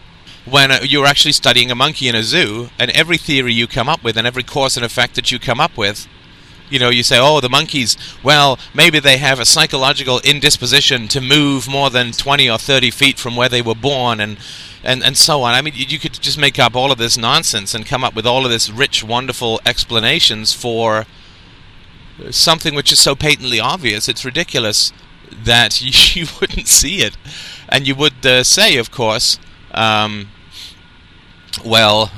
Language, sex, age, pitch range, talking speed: English, male, 40-59, 110-135 Hz, 195 wpm